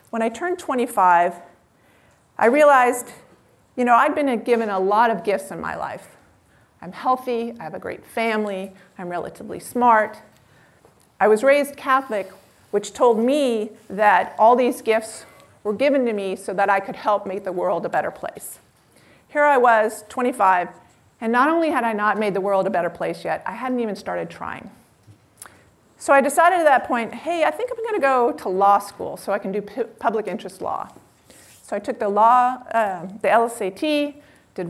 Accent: American